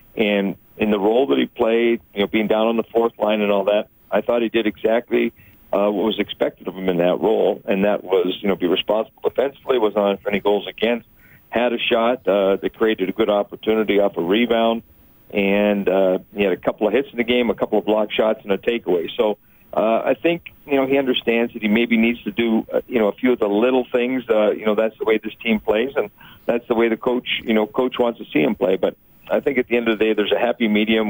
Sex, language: male, English